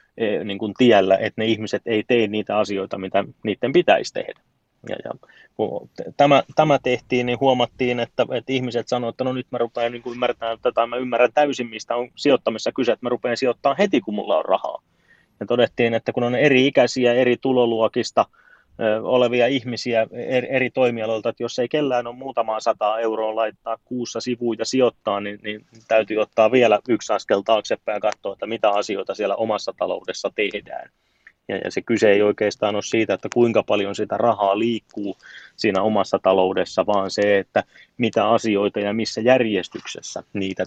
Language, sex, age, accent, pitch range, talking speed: Finnish, male, 30-49, native, 100-125 Hz, 170 wpm